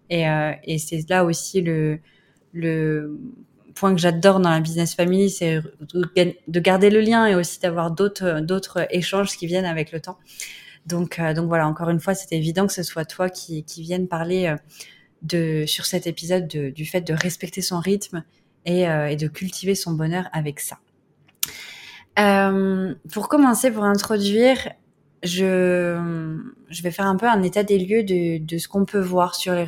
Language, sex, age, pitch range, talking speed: French, female, 20-39, 170-200 Hz, 185 wpm